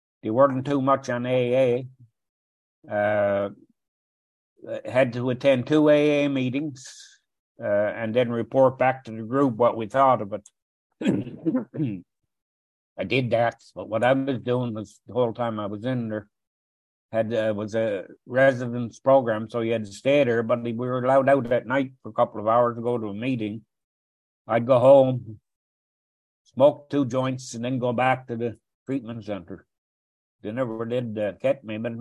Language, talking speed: English, 170 wpm